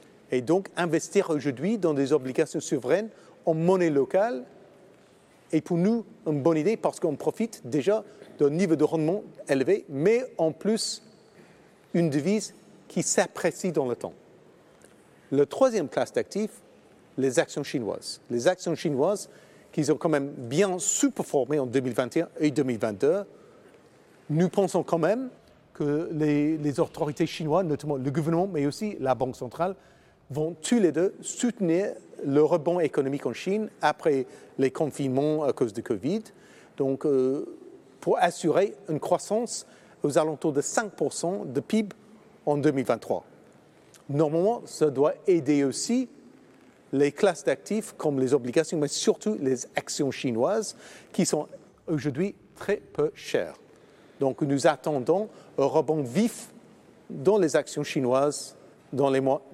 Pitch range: 145-205 Hz